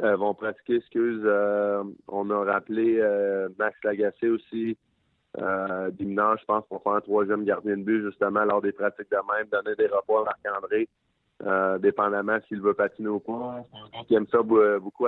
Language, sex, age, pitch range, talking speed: French, male, 20-39, 100-115 Hz, 185 wpm